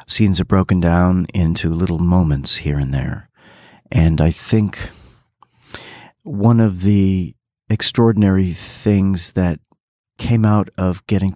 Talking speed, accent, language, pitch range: 120 wpm, American, English, 85-105 Hz